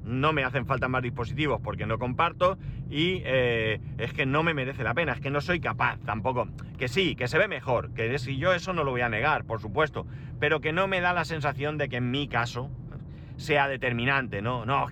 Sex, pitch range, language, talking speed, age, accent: male, 120-150 Hz, Spanish, 235 wpm, 40-59, Spanish